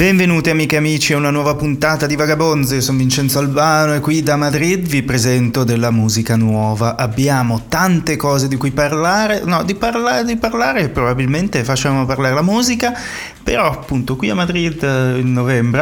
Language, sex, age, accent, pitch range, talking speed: Italian, male, 30-49, native, 120-155 Hz, 175 wpm